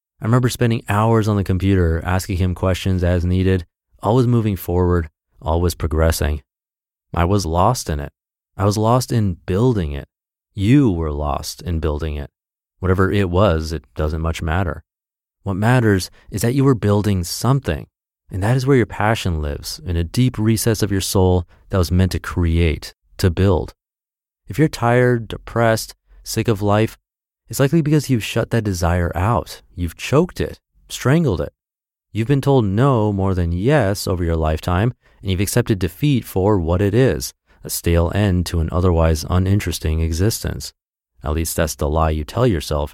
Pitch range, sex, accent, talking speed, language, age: 80-110 Hz, male, American, 175 wpm, English, 30-49